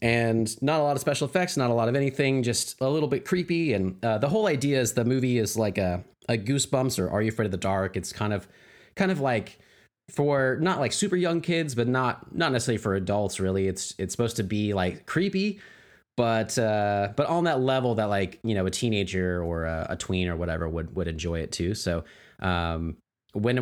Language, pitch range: English, 95-125 Hz